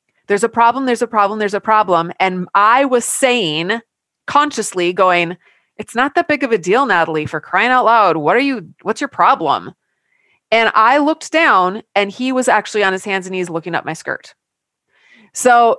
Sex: female